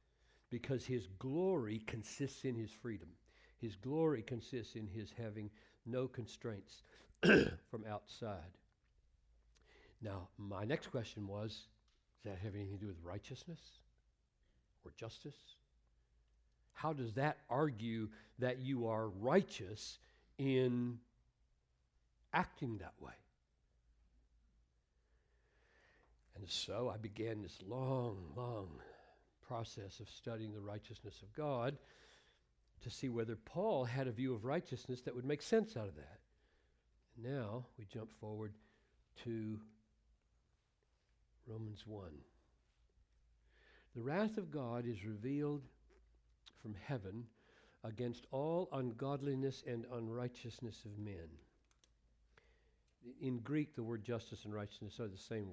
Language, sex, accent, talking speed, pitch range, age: English, male, American, 115 wpm, 90-125 Hz, 60-79